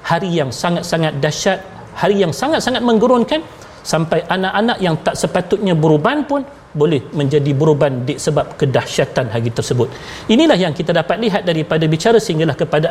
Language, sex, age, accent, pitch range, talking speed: Malayalam, male, 40-59, Indonesian, 160-220 Hz, 150 wpm